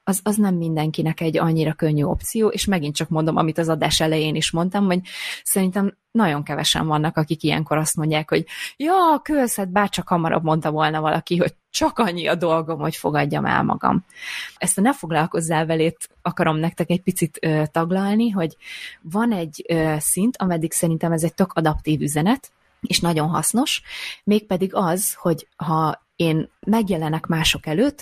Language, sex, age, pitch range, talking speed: Hungarian, female, 20-39, 155-190 Hz, 170 wpm